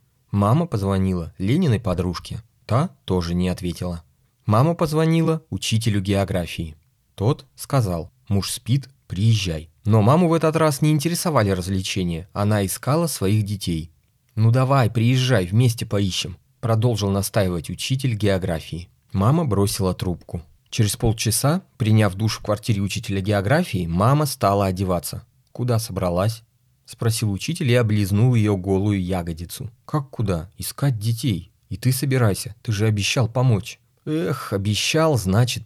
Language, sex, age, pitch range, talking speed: Russian, male, 30-49, 95-130 Hz, 125 wpm